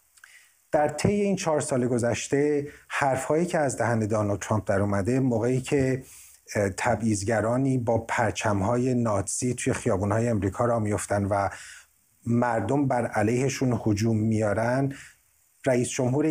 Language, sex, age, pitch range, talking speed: Persian, male, 30-49, 110-140 Hz, 125 wpm